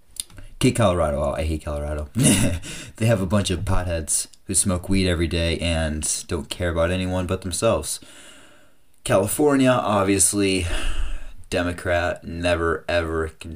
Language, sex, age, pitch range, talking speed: English, male, 30-49, 90-110 Hz, 135 wpm